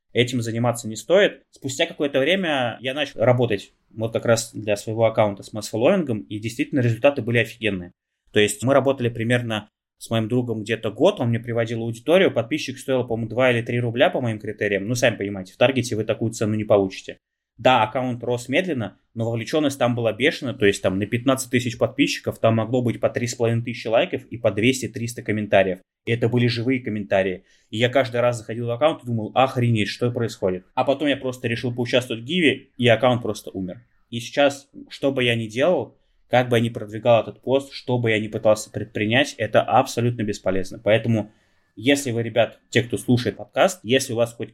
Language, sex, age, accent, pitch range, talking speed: Russian, male, 20-39, native, 105-125 Hz, 200 wpm